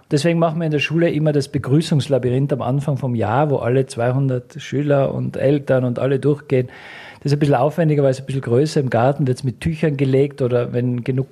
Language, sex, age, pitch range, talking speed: German, male, 50-69, 130-150 Hz, 225 wpm